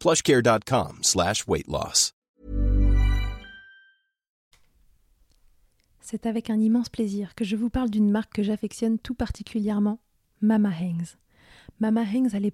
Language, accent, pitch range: French, French, 180-215 Hz